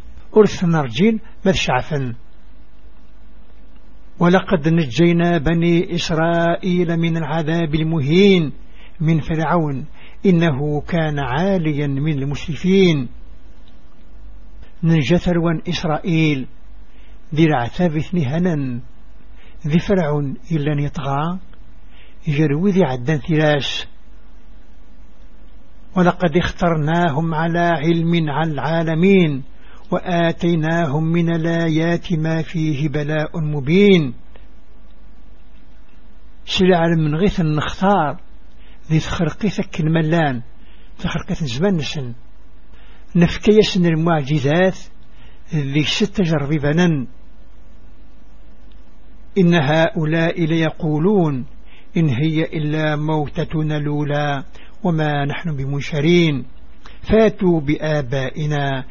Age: 60-79